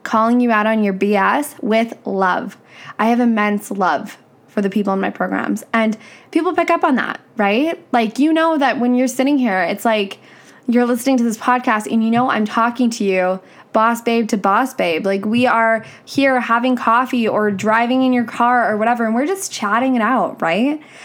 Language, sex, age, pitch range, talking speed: English, female, 10-29, 220-275 Hz, 205 wpm